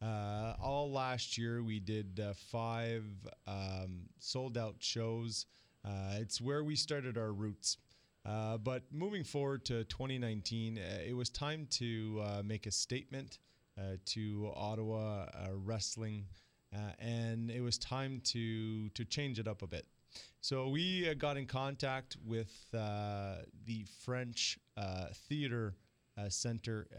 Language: English